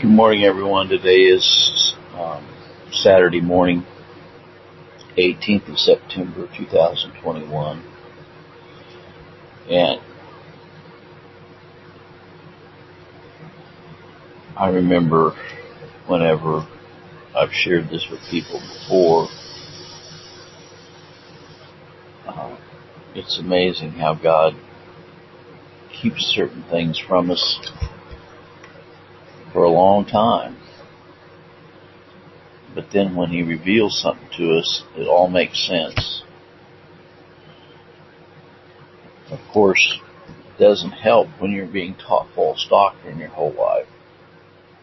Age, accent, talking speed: 60-79, American, 80 wpm